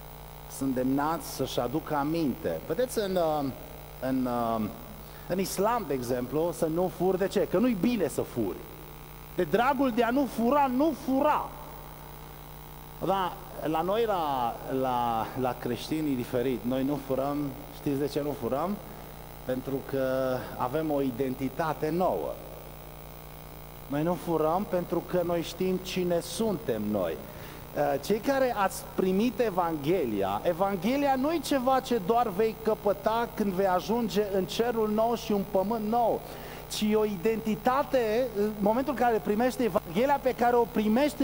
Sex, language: male, Romanian